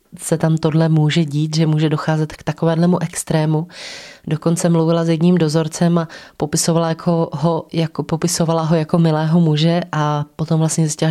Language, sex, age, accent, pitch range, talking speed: Czech, female, 20-39, native, 155-170 Hz, 160 wpm